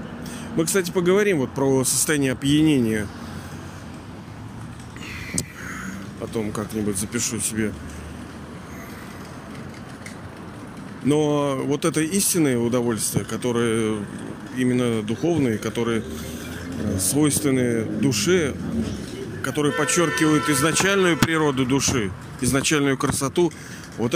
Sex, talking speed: male, 75 wpm